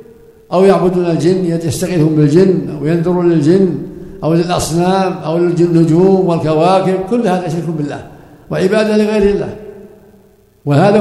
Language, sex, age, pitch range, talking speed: Arabic, male, 60-79, 150-185 Hz, 115 wpm